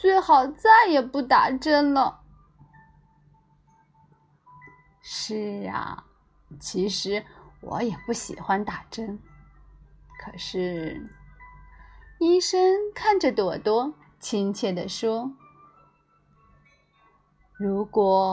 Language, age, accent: Chinese, 30-49, native